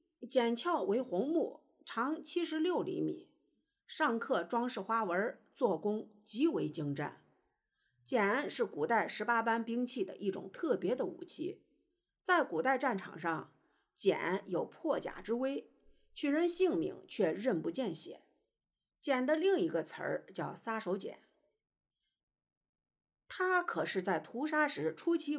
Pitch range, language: 230-345 Hz, Chinese